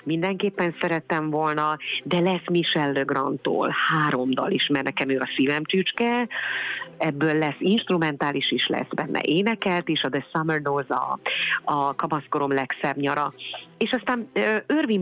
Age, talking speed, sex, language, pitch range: 30-49, 140 wpm, female, Hungarian, 145-180 Hz